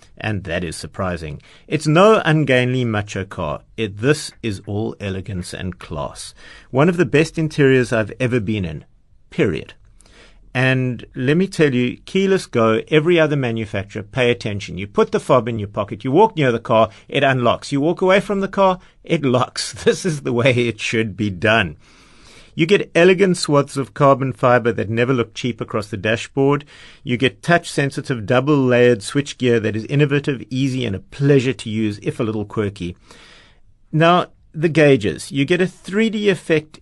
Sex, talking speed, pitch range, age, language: male, 175 wpm, 110-145 Hz, 50-69, English